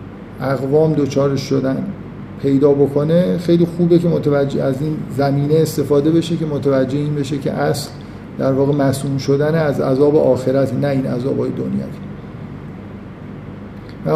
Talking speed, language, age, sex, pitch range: 135 wpm, Persian, 50-69, male, 140-165 Hz